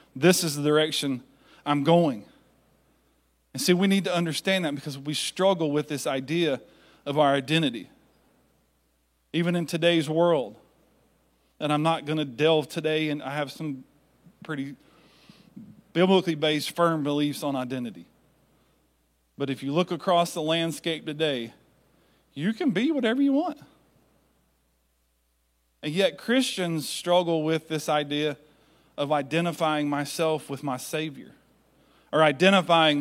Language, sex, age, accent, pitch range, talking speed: English, male, 40-59, American, 140-170 Hz, 130 wpm